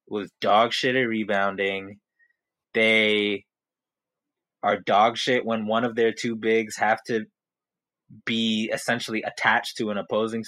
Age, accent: 20-39, American